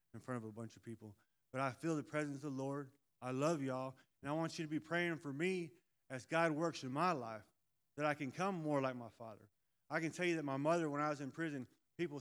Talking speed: 265 wpm